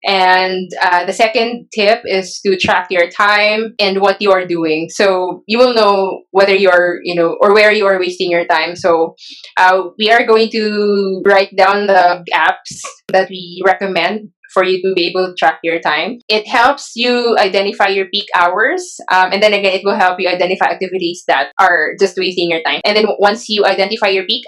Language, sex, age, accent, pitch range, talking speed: English, female, 20-39, Filipino, 180-210 Hz, 205 wpm